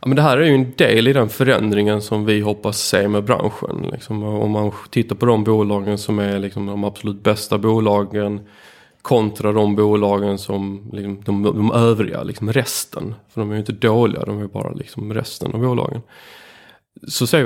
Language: Swedish